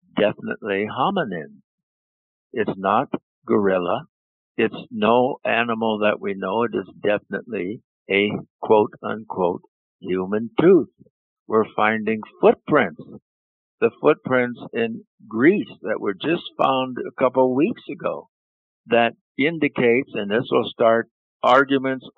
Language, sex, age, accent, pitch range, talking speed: English, male, 60-79, American, 100-125 Hz, 110 wpm